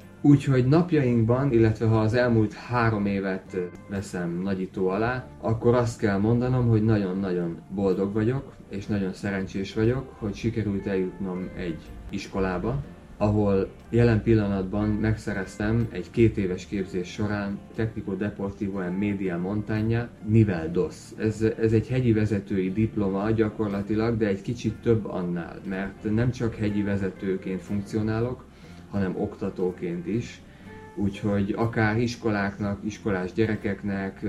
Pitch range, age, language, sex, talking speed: 95-115 Hz, 30-49, Hungarian, male, 120 wpm